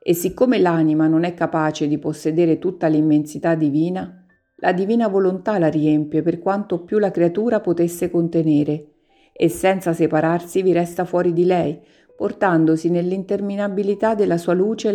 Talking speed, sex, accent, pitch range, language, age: 145 wpm, female, native, 160-190 Hz, Italian, 50-69